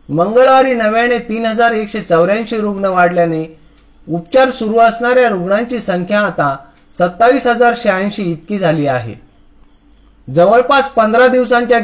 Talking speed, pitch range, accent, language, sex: 60 wpm, 175-230 Hz, native, Marathi, male